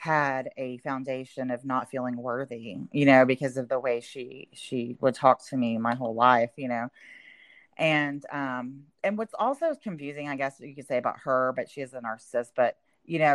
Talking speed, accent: 200 wpm, American